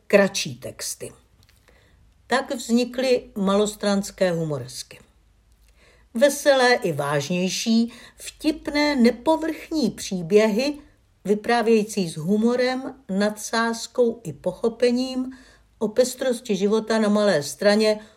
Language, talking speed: Czech, 80 wpm